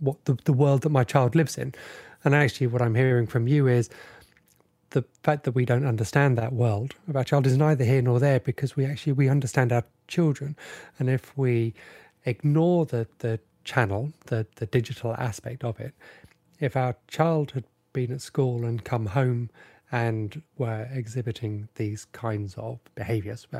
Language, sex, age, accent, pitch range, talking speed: English, male, 30-49, British, 115-140 Hz, 180 wpm